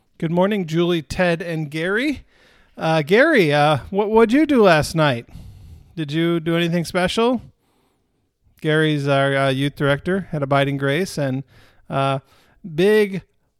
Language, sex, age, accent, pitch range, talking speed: English, male, 40-59, American, 140-190 Hz, 140 wpm